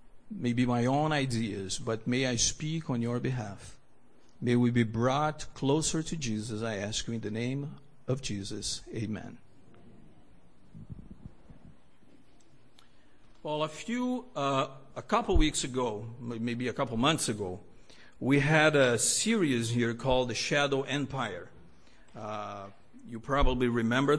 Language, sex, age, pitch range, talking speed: English, male, 50-69, 125-190 Hz, 130 wpm